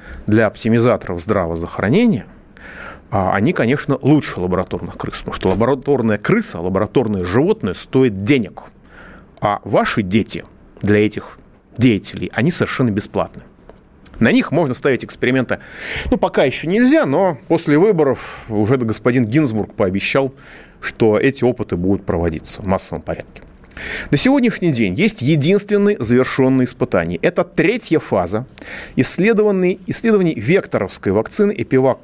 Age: 30-49